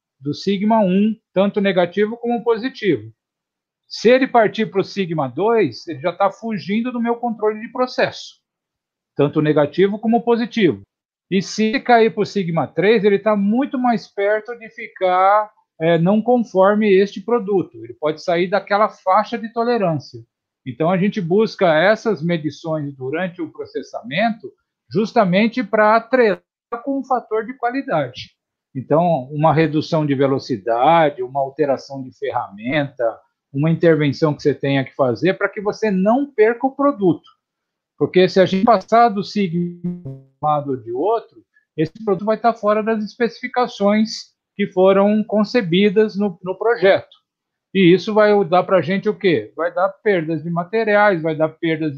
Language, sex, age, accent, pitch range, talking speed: Portuguese, male, 50-69, Brazilian, 165-220 Hz, 155 wpm